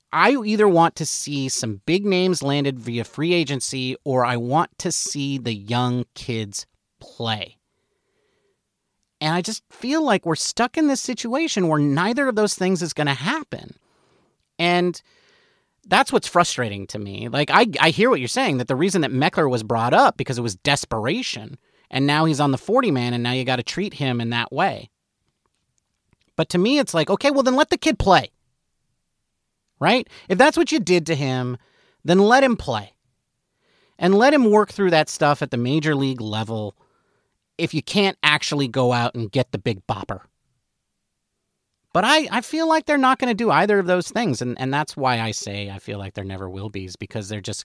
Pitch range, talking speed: 120-190 Hz, 200 wpm